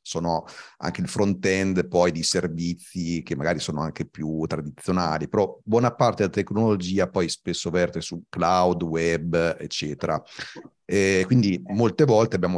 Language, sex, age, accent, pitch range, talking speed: Italian, male, 40-59, native, 85-105 Hz, 150 wpm